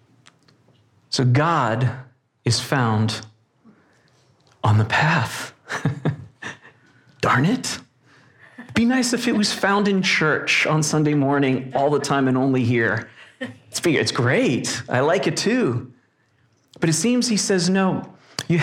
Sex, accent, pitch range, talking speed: male, American, 120-150 Hz, 125 wpm